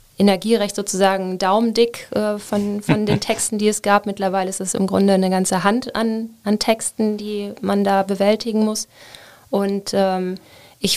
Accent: German